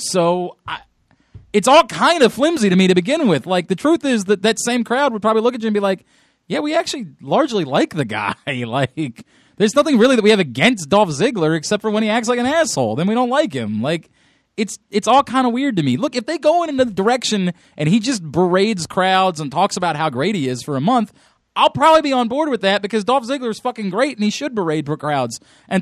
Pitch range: 150-225 Hz